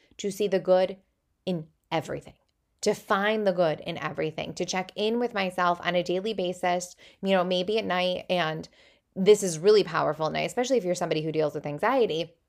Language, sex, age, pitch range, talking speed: English, female, 10-29, 170-210 Hz, 195 wpm